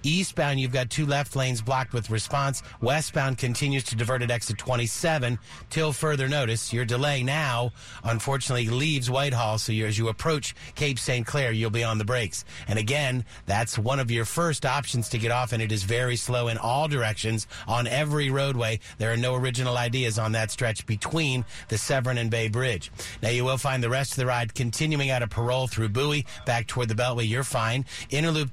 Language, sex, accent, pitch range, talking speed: English, male, American, 115-140 Hz, 200 wpm